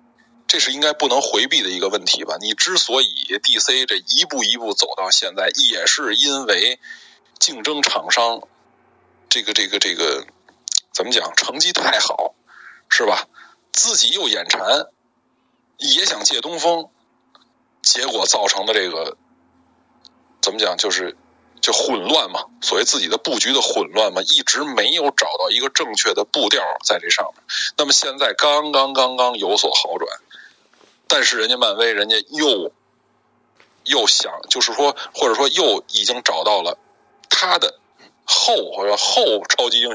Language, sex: Chinese, male